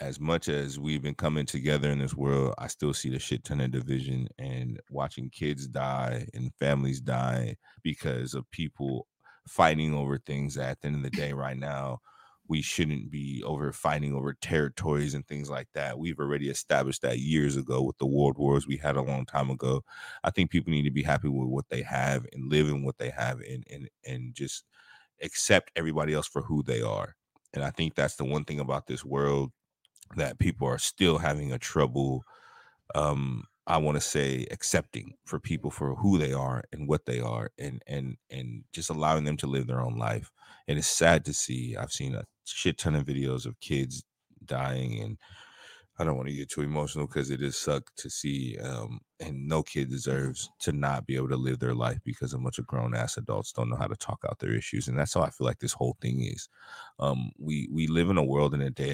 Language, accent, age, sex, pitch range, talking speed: English, American, 30-49, male, 65-75 Hz, 220 wpm